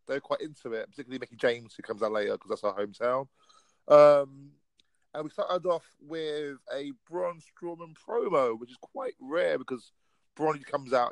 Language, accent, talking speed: English, British, 180 wpm